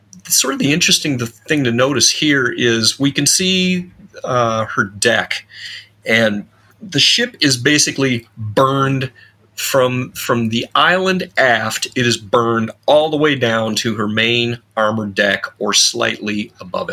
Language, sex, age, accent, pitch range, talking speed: English, male, 30-49, American, 110-145 Hz, 150 wpm